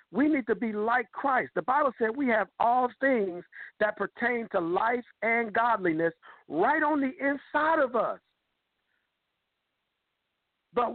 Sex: male